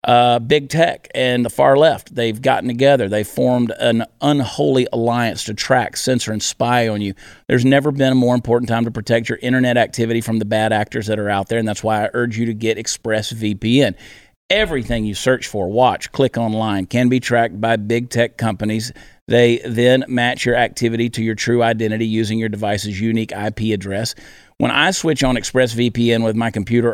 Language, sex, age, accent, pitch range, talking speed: English, male, 40-59, American, 110-130 Hz, 195 wpm